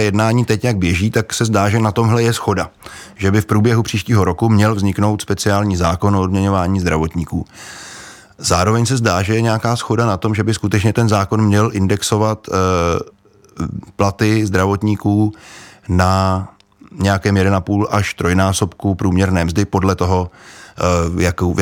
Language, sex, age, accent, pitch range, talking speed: Czech, male, 30-49, native, 90-110 Hz, 145 wpm